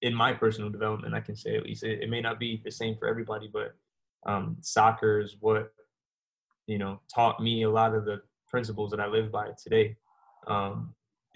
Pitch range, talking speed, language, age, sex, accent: 110-115 Hz, 195 wpm, English, 20-39, male, American